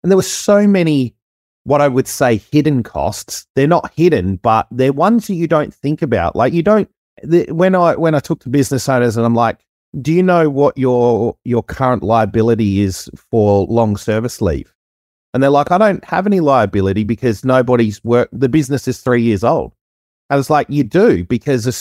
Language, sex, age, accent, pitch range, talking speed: English, male, 30-49, Australian, 105-145 Hz, 200 wpm